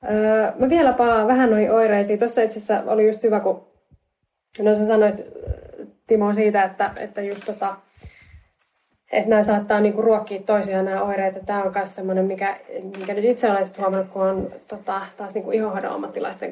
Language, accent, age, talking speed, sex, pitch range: Finnish, native, 20-39, 165 wpm, female, 190-215 Hz